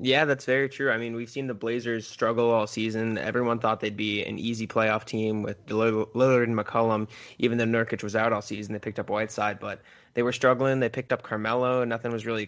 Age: 20-39